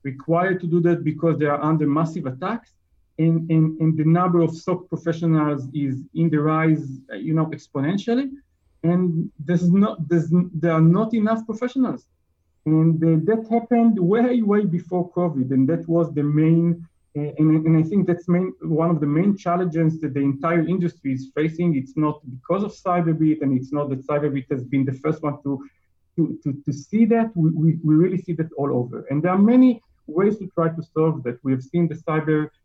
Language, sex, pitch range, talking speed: English, male, 145-175 Hz, 200 wpm